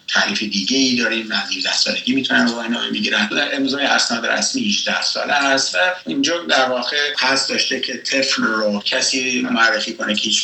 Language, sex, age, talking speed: Persian, male, 60-79, 170 wpm